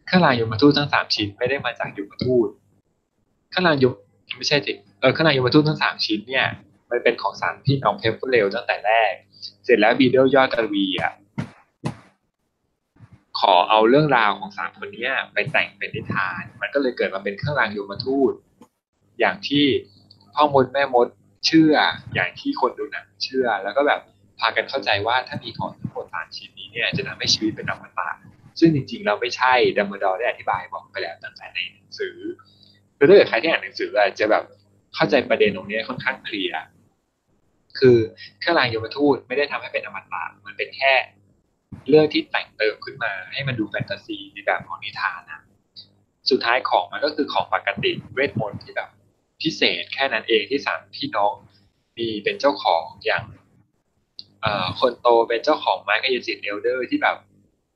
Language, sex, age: English, male, 20-39